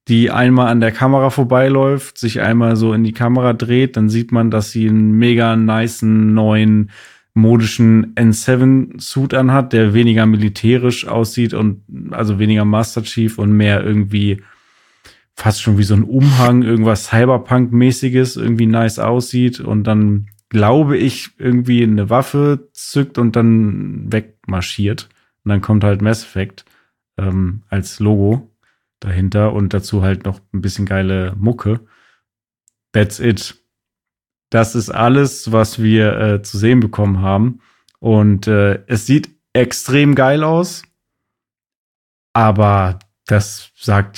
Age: 30-49